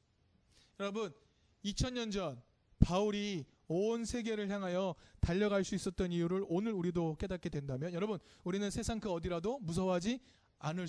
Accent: native